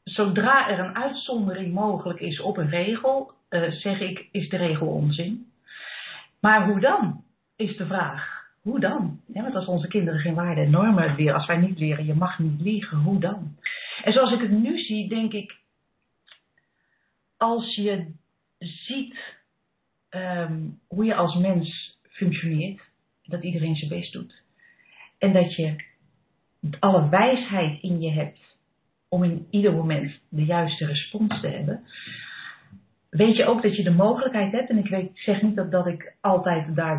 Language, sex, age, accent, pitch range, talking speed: Dutch, female, 40-59, Dutch, 160-205 Hz, 160 wpm